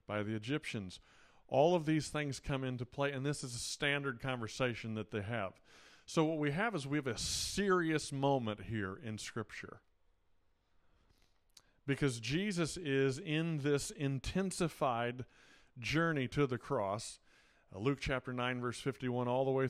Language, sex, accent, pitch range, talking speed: English, male, American, 115-145 Hz, 155 wpm